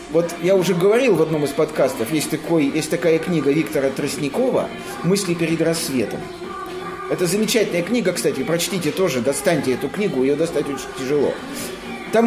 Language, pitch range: Russian, 170-225 Hz